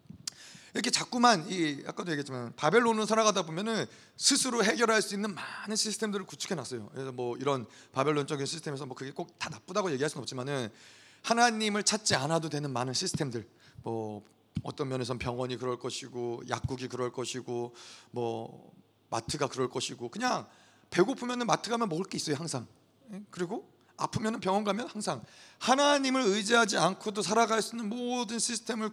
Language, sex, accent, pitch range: Korean, male, native, 135-215 Hz